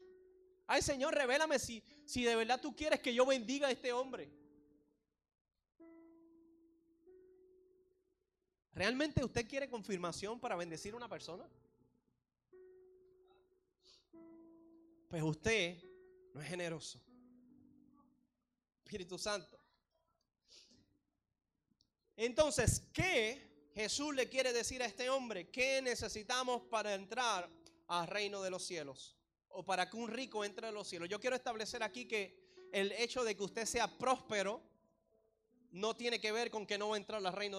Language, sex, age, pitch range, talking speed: Spanish, male, 30-49, 200-285 Hz, 130 wpm